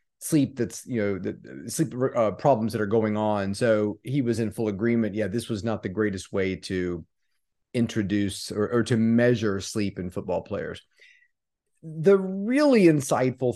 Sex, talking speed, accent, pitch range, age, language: male, 170 wpm, American, 110-135 Hz, 30-49, English